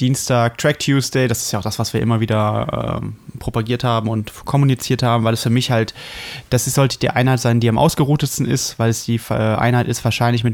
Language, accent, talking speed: German, German, 240 wpm